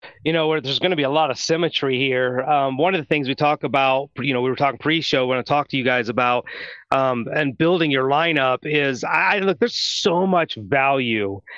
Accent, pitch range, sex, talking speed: American, 145-175 Hz, male, 235 wpm